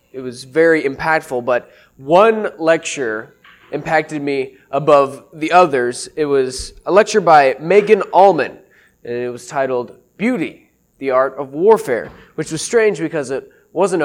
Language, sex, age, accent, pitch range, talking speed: English, male, 20-39, American, 135-180 Hz, 145 wpm